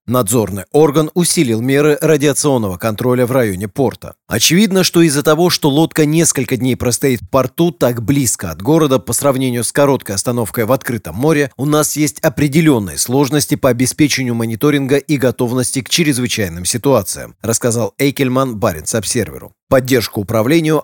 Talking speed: 145 wpm